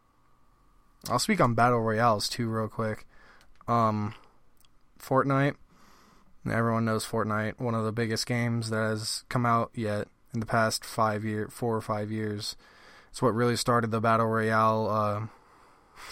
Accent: American